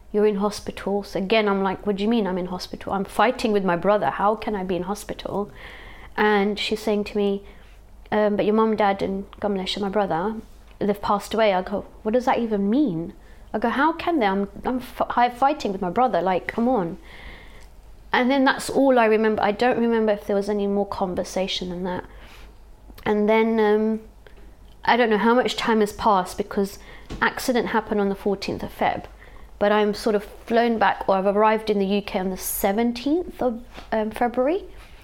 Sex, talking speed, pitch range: female, 205 wpm, 195-230 Hz